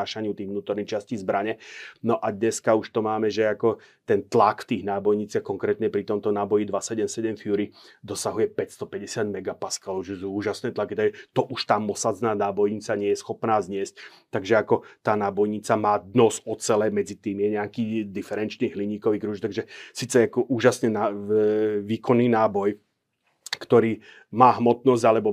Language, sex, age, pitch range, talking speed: Slovak, male, 30-49, 105-115 Hz, 145 wpm